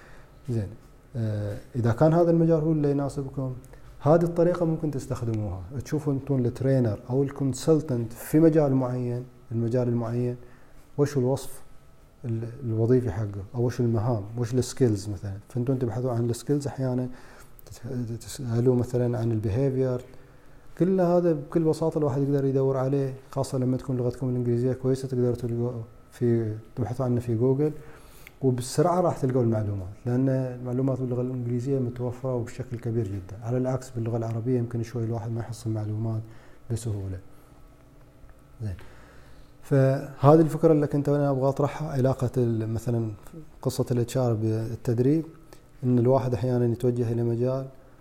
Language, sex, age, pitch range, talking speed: Arabic, male, 30-49, 115-135 Hz, 125 wpm